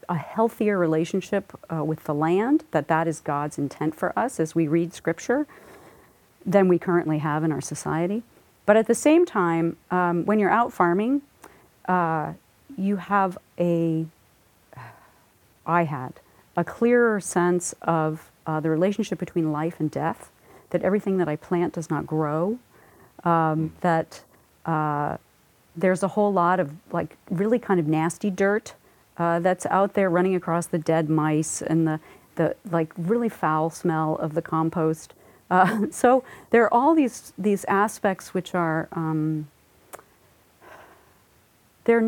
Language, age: English, 40-59